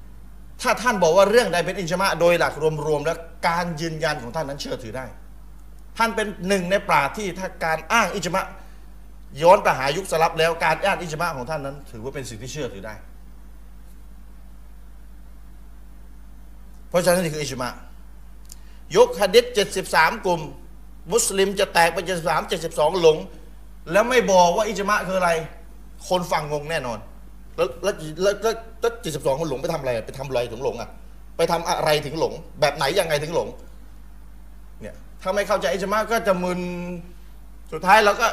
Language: Thai